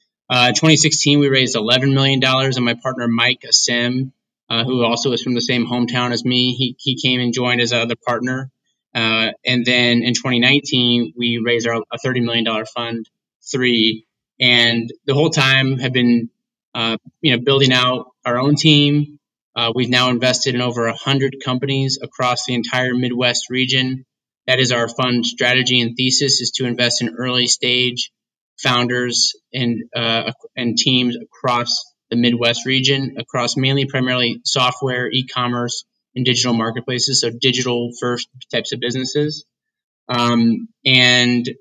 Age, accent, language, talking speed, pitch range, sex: 20-39, American, English, 155 wpm, 120-130 Hz, male